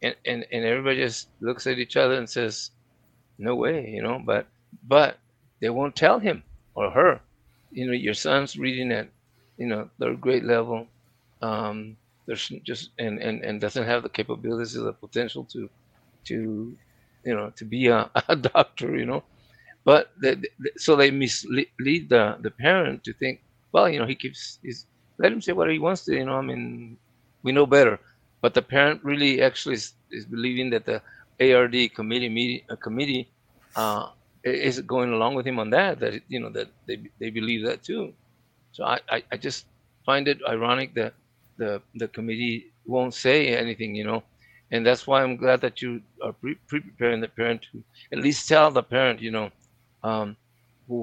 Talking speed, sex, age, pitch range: 185 wpm, male, 50-69, 115-130 Hz